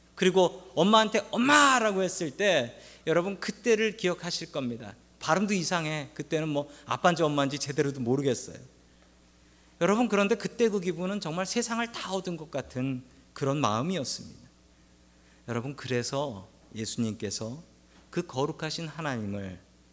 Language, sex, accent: Korean, male, native